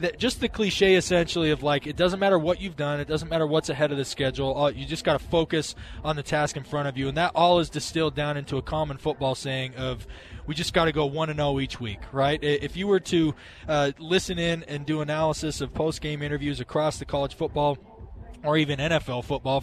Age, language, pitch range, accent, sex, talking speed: 20-39, English, 130-160 Hz, American, male, 235 wpm